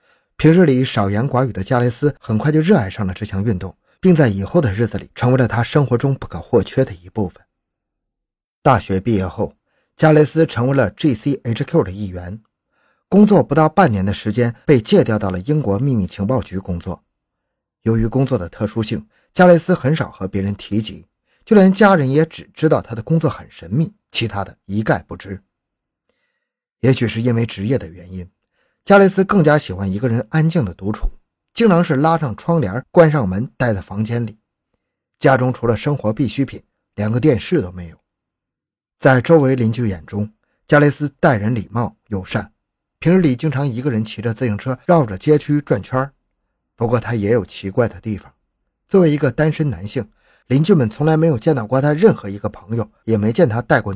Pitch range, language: 100-150 Hz, Chinese